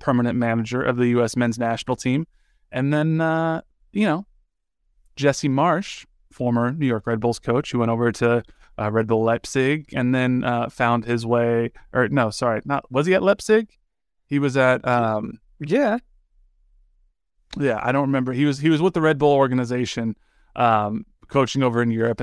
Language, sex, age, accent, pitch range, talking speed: English, male, 20-39, American, 115-135 Hz, 180 wpm